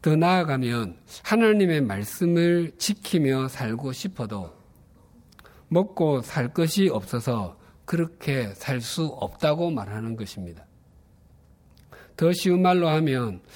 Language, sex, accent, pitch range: Korean, male, native, 110-175 Hz